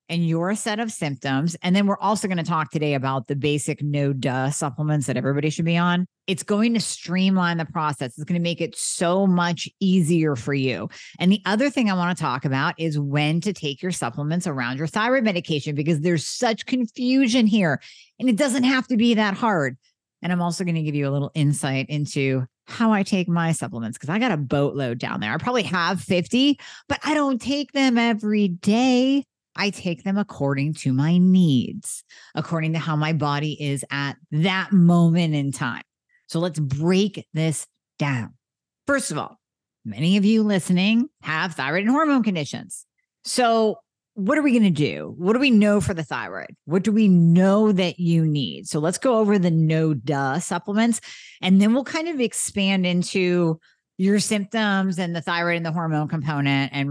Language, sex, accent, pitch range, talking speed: English, female, American, 150-205 Hz, 195 wpm